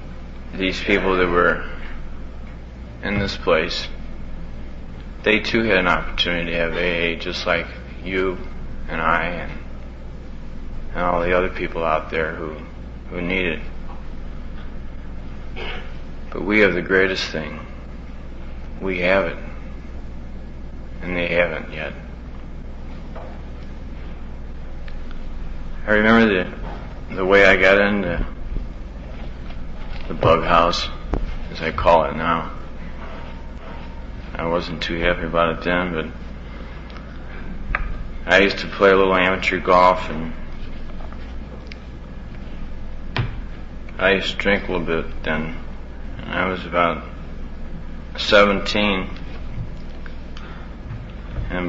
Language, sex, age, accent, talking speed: English, male, 30-49, American, 105 wpm